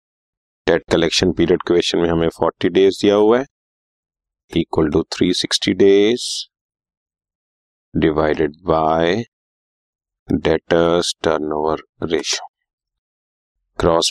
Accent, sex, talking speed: native, male, 80 wpm